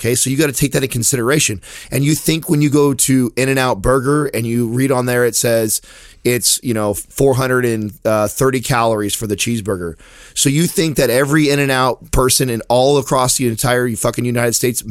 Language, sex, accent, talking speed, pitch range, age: English, male, American, 205 wpm, 115-135 Hz, 30-49